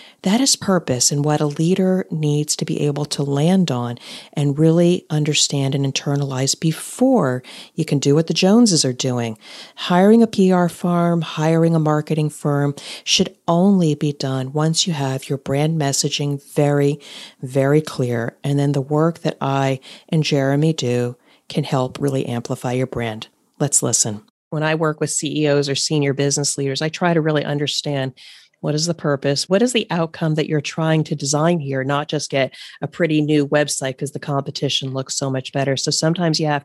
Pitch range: 140-165 Hz